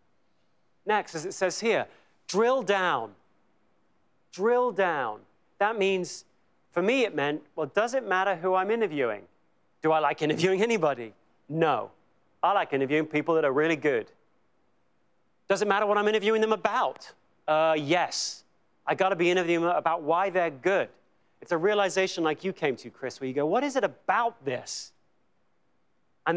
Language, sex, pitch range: English, male, 160-220 Hz